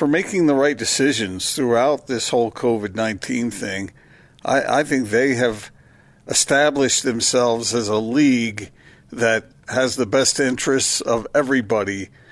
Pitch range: 120-140 Hz